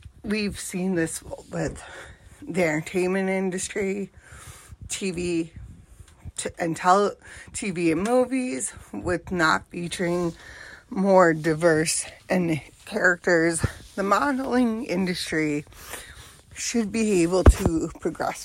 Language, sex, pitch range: English, female, 150-185 Hz